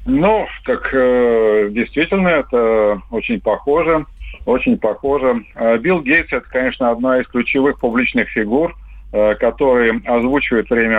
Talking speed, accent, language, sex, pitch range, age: 120 wpm, native, Russian, male, 110-130 Hz, 50-69